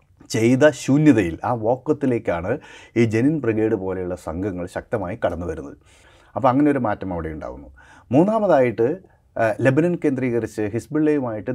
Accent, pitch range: native, 100-145 Hz